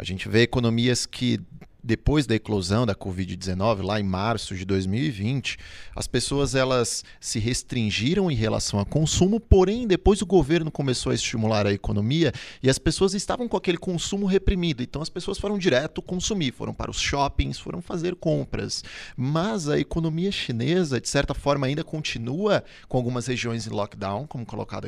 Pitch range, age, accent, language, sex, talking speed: 110-155 Hz, 30-49, Brazilian, Portuguese, male, 170 wpm